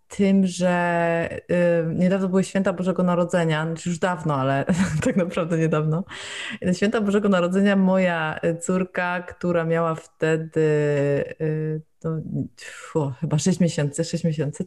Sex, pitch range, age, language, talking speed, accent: female, 155-180 Hz, 20-39, Polish, 110 wpm, native